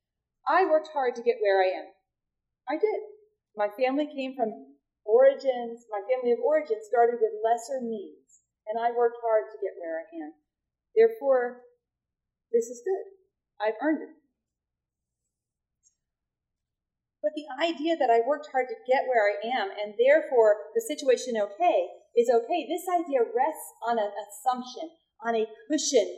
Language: English